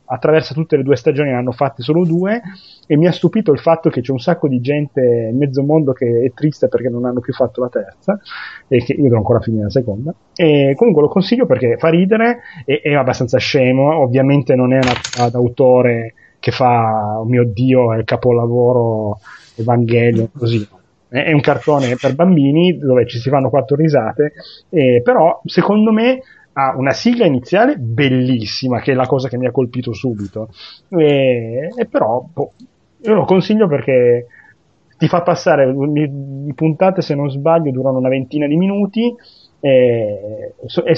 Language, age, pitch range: Italian, 30-49, 125-150 Hz